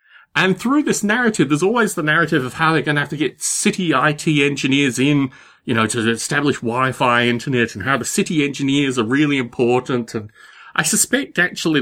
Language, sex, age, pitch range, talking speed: English, male, 30-49, 105-160 Hz, 195 wpm